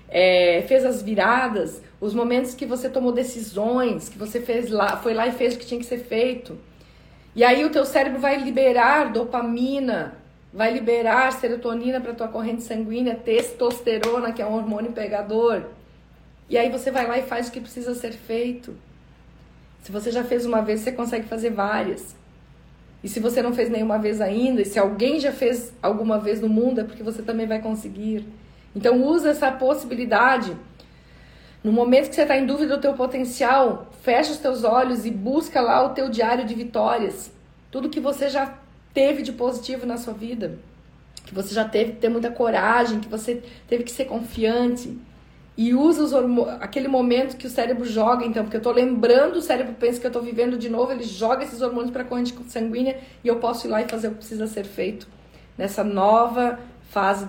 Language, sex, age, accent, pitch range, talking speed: Portuguese, female, 40-59, Brazilian, 225-255 Hz, 195 wpm